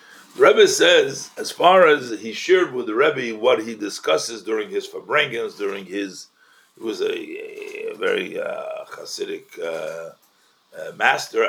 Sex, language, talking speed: male, English, 145 wpm